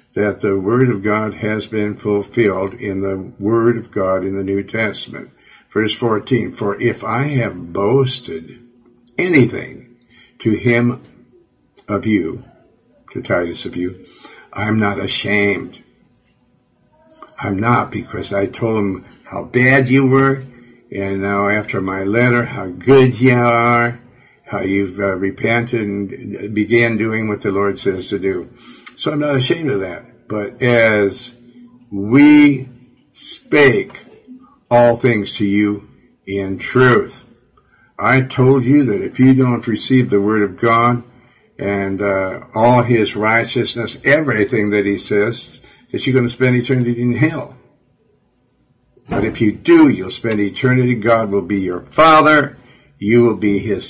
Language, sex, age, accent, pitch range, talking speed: English, male, 60-79, American, 100-125 Hz, 145 wpm